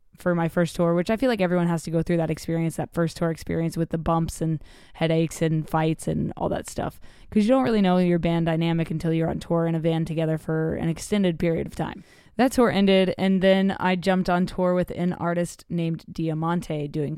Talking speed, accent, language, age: 235 wpm, American, English, 20-39